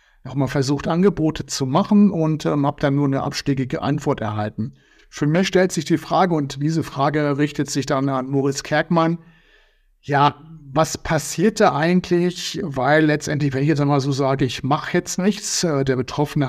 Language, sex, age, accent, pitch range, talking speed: German, male, 60-79, German, 135-160 Hz, 180 wpm